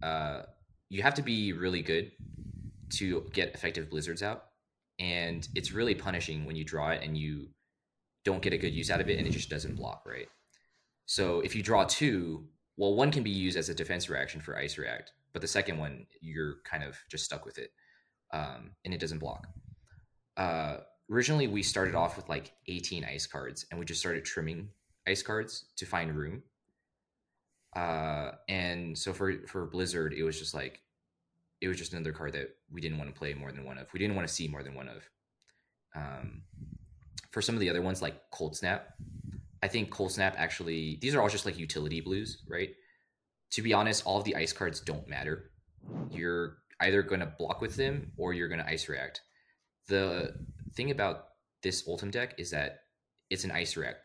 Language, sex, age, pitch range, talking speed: English, male, 20-39, 80-100 Hz, 200 wpm